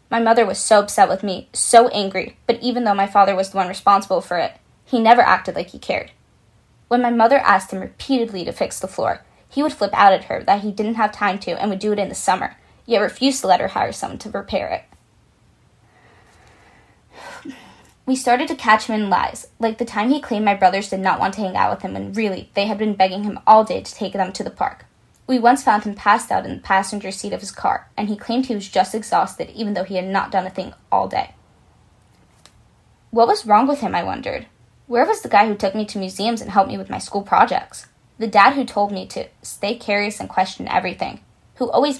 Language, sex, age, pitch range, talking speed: English, female, 10-29, 195-230 Hz, 240 wpm